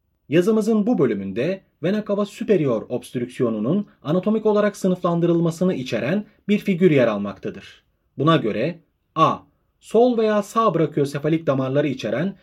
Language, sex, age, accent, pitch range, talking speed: Turkish, male, 30-49, native, 130-200 Hz, 115 wpm